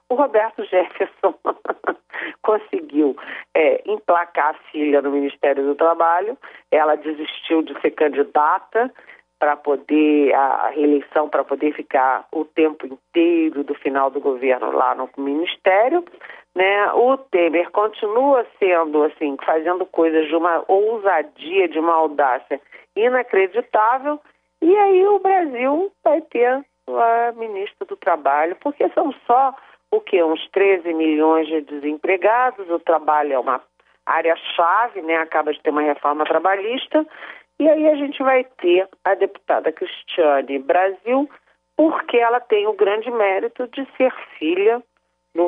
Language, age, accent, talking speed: Portuguese, 40-59, Brazilian, 135 wpm